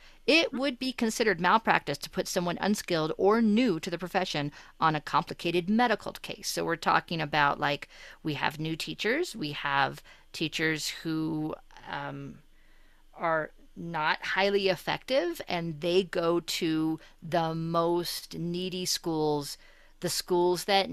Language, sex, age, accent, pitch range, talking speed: English, female, 40-59, American, 145-180 Hz, 140 wpm